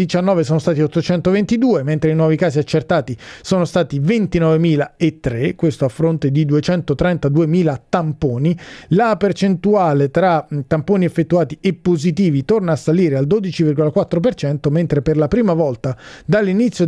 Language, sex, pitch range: Italian, male, 150-185 Hz